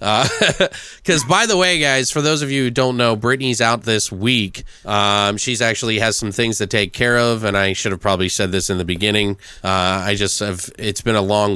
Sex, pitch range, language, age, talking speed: male, 105-140 Hz, English, 20-39, 235 wpm